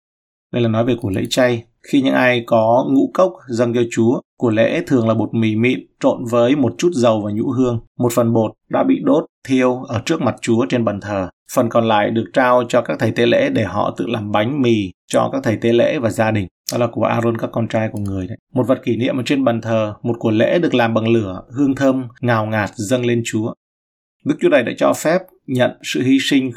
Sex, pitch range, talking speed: male, 110-130 Hz, 250 wpm